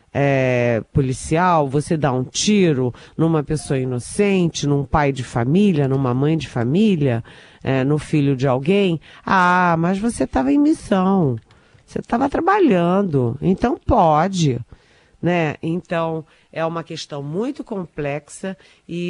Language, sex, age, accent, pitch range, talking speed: Portuguese, female, 50-69, Brazilian, 140-175 Hz, 125 wpm